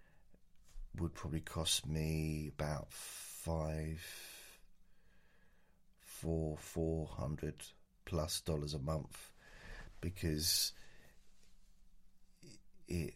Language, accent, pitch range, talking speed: English, British, 80-90 Hz, 60 wpm